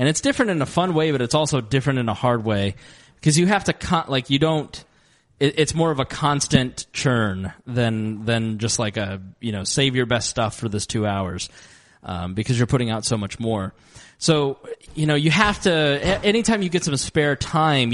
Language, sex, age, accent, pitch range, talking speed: English, male, 20-39, American, 115-150 Hz, 235 wpm